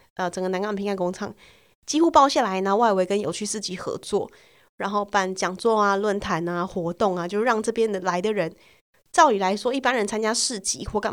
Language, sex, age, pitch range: Chinese, female, 20-39, 190-225 Hz